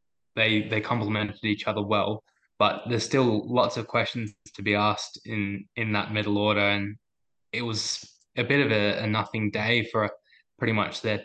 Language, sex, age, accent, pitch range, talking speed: English, male, 10-29, Australian, 105-115 Hz, 185 wpm